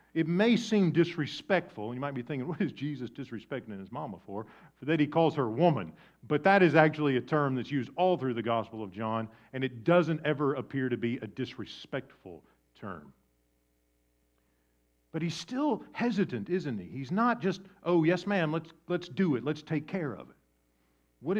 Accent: American